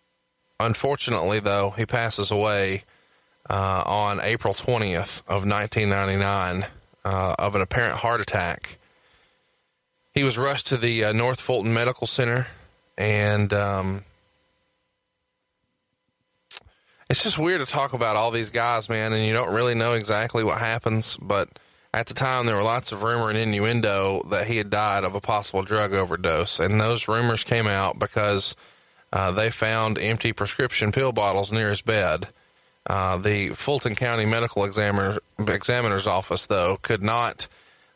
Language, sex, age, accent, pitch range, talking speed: English, male, 20-39, American, 100-120 Hz, 150 wpm